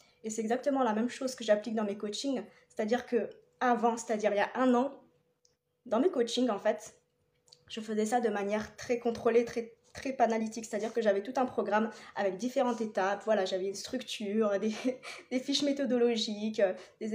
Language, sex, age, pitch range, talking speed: French, female, 20-39, 205-240 Hz, 185 wpm